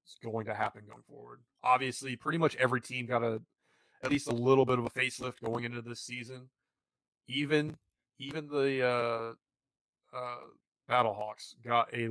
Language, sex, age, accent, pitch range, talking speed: English, male, 20-39, American, 110-130 Hz, 165 wpm